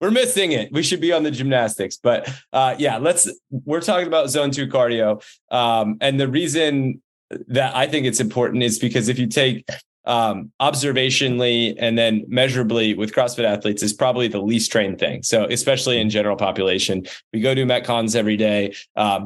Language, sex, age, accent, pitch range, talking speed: English, male, 20-39, American, 105-125 Hz, 185 wpm